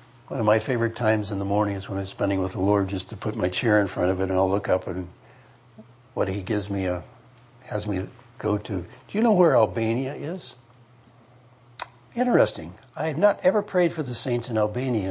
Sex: male